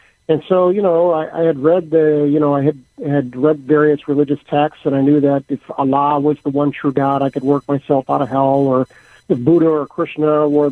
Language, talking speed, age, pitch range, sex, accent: English, 235 wpm, 50-69, 135-155 Hz, male, American